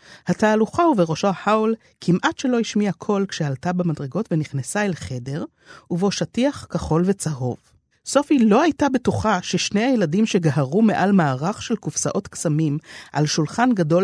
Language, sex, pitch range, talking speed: Hebrew, female, 150-220 Hz, 130 wpm